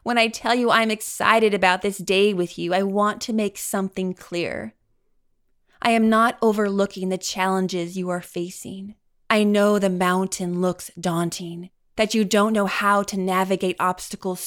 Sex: female